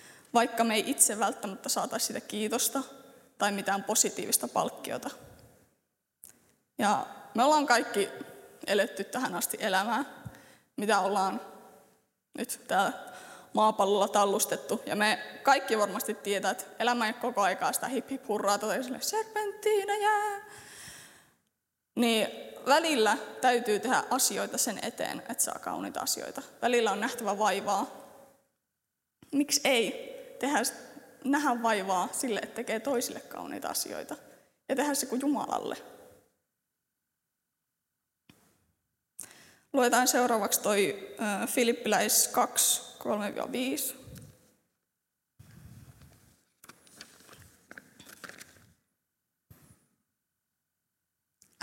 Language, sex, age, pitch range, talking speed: Finnish, female, 20-39, 210-275 Hz, 90 wpm